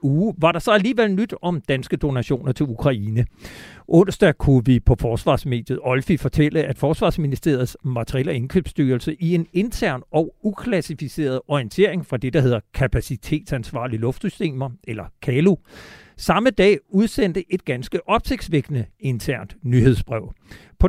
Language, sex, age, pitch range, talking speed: Danish, male, 60-79, 130-175 Hz, 125 wpm